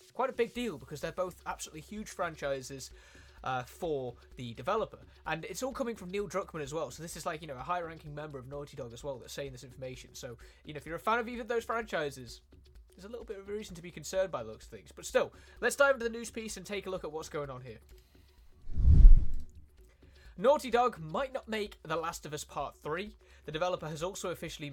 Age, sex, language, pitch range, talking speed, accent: 20-39, male, Italian, 130-195 Hz, 240 wpm, British